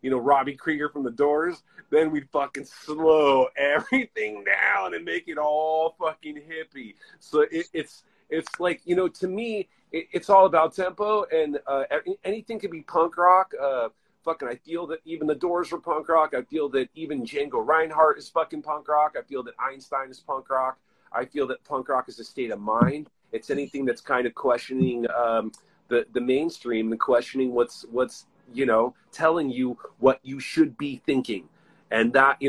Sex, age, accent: male, 40-59, American